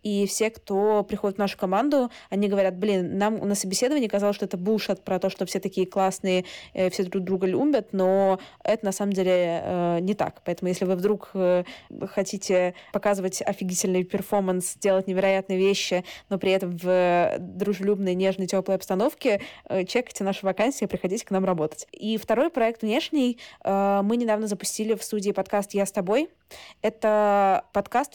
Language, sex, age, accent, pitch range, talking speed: Russian, female, 20-39, native, 190-215 Hz, 160 wpm